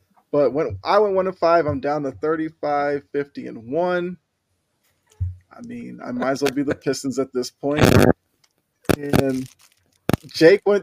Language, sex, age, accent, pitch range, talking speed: English, male, 20-39, American, 125-170 Hz, 150 wpm